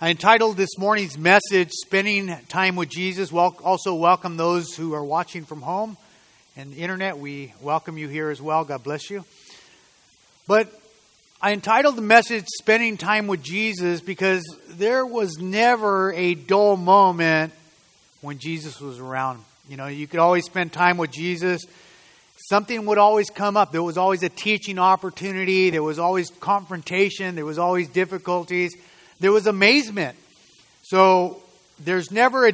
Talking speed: 155 wpm